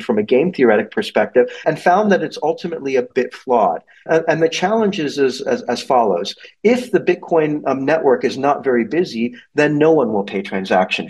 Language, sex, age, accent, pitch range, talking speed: English, male, 50-69, American, 120-160 Hz, 195 wpm